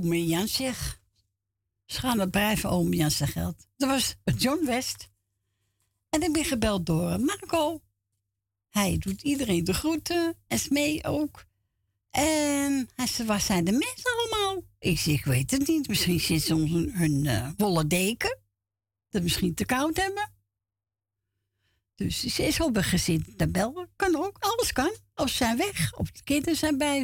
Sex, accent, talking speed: female, Dutch, 160 wpm